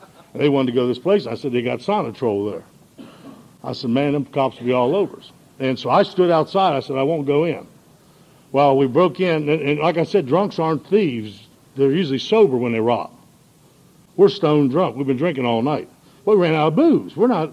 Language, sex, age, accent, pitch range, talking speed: English, male, 60-79, American, 125-160 Hz, 230 wpm